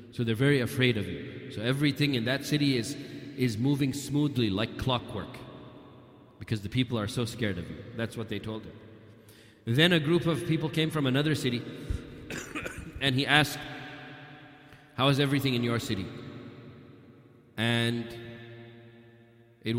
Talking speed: 150 wpm